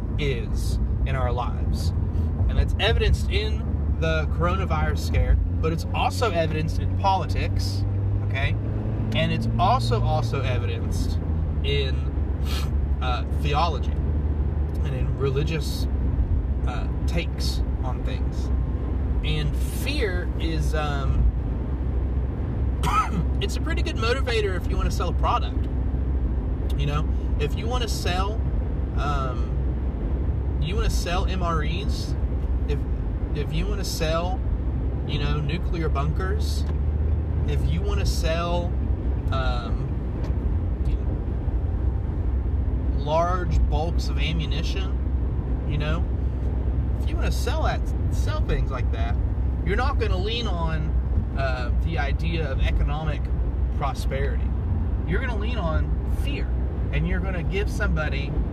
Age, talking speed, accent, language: 30-49, 115 wpm, American, English